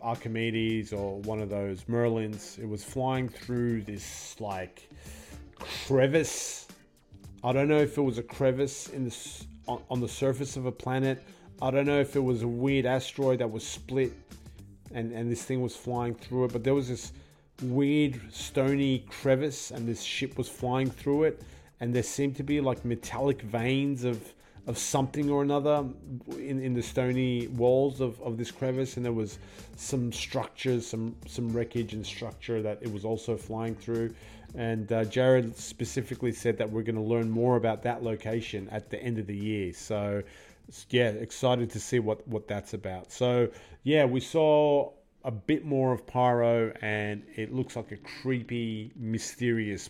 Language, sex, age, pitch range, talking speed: English, male, 30-49, 110-130 Hz, 175 wpm